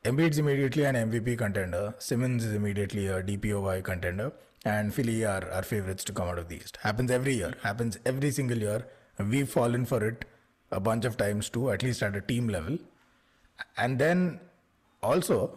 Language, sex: English, male